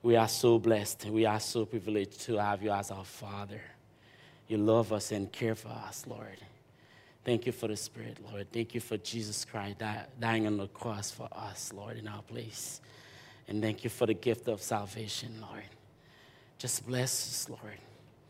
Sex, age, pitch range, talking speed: male, 30-49, 110-120 Hz, 185 wpm